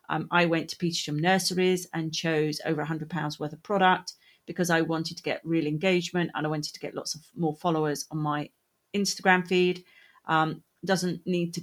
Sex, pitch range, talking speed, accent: female, 160-195 Hz, 190 wpm, British